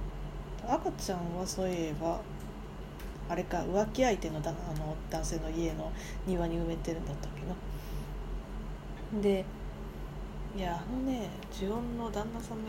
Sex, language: female, Japanese